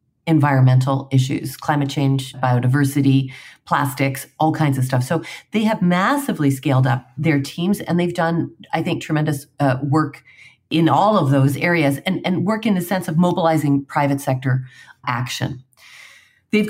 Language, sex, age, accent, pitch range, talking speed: English, female, 40-59, American, 135-170 Hz, 155 wpm